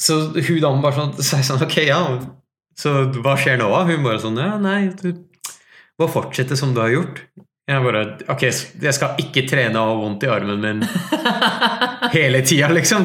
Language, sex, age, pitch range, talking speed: English, male, 30-49, 130-175 Hz, 200 wpm